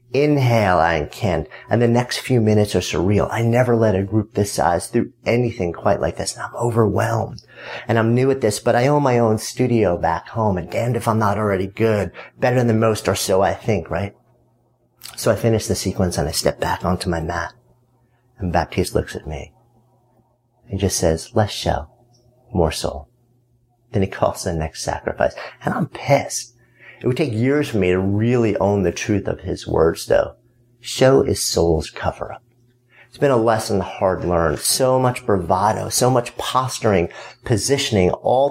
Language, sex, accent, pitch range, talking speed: English, male, American, 95-120 Hz, 185 wpm